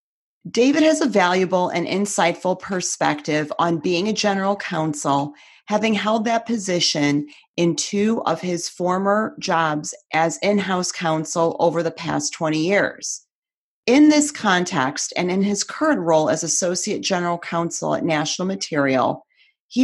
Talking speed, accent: 140 wpm, American